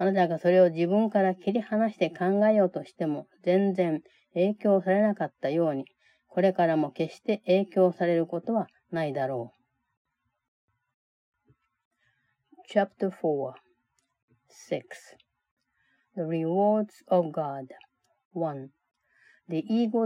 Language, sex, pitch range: Japanese, female, 160-200 Hz